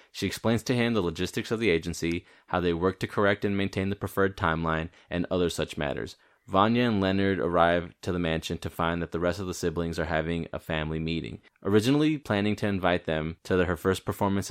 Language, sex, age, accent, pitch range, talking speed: English, male, 20-39, American, 85-100 Hz, 215 wpm